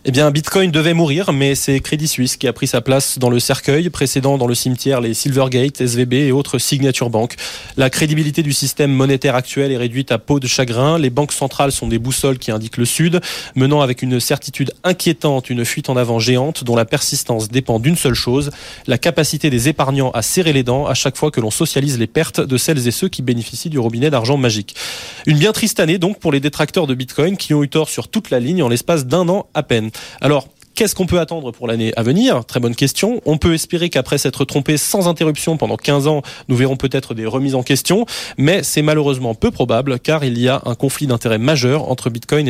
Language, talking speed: French, 230 wpm